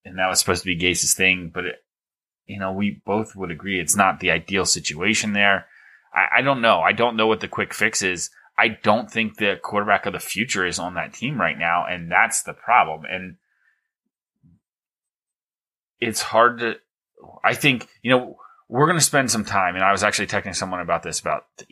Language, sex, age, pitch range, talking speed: English, male, 20-39, 90-110 Hz, 210 wpm